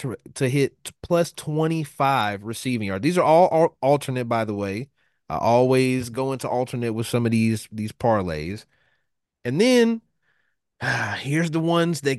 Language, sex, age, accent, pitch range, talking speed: English, male, 30-49, American, 120-160 Hz, 155 wpm